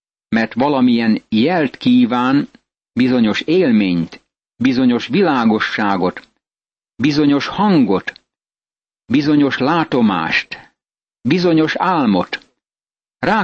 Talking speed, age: 65 wpm, 50-69